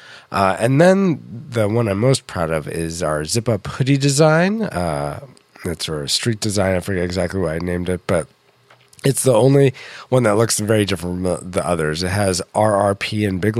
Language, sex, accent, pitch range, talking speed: English, male, American, 90-125 Hz, 190 wpm